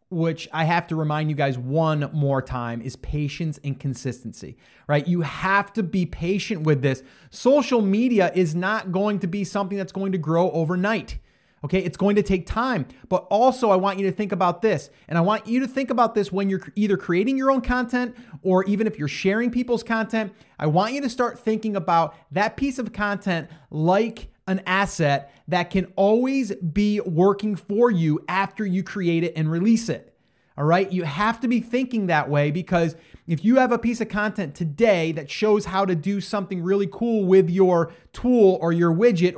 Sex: male